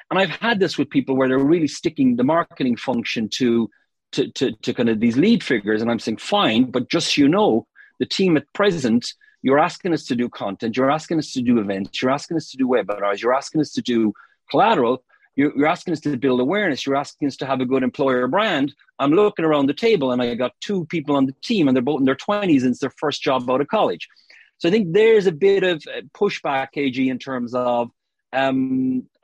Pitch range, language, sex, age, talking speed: 125-175 Hz, English, male, 40-59, 235 wpm